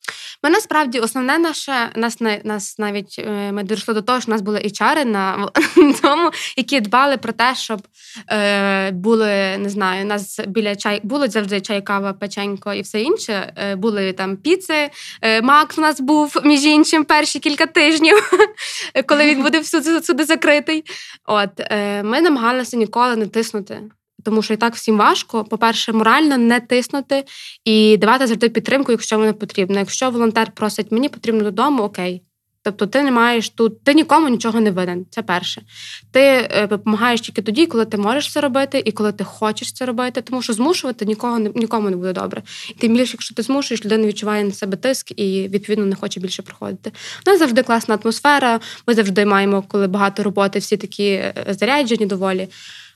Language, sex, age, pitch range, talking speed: Ukrainian, female, 20-39, 205-270 Hz, 170 wpm